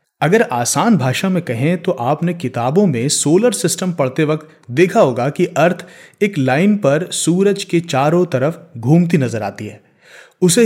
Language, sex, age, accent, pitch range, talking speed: Hindi, male, 30-49, native, 125-175 Hz, 165 wpm